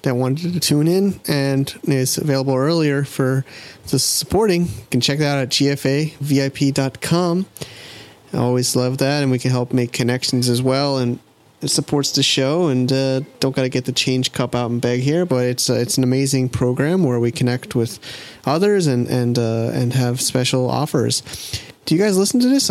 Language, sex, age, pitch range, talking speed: English, male, 30-49, 120-140 Hz, 195 wpm